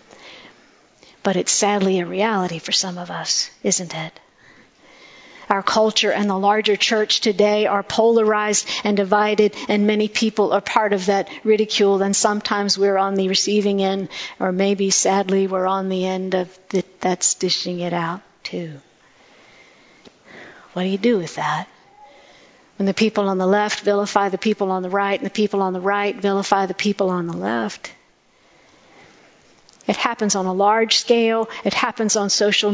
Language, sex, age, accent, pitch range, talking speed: English, female, 50-69, American, 185-210 Hz, 165 wpm